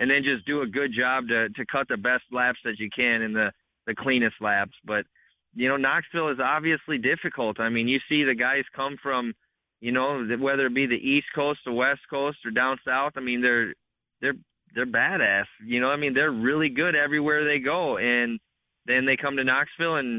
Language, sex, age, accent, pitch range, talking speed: English, male, 20-39, American, 115-135 Hz, 215 wpm